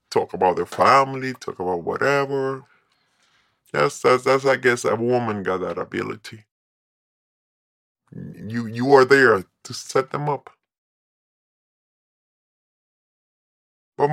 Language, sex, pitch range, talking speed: English, female, 110-135 Hz, 115 wpm